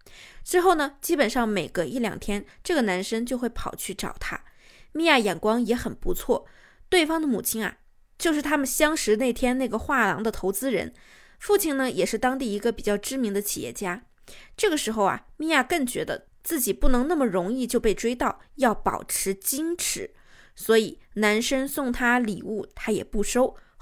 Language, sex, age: Chinese, female, 20-39